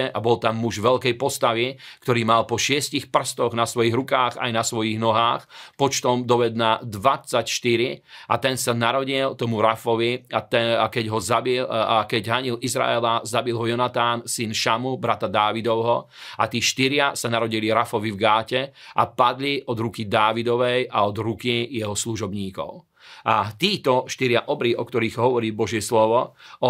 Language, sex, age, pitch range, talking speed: Slovak, male, 40-59, 115-130 Hz, 155 wpm